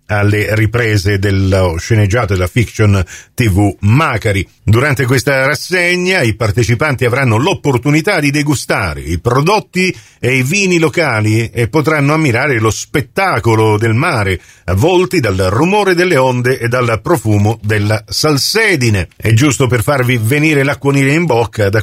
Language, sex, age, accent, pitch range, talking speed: Italian, male, 50-69, native, 110-140 Hz, 135 wpm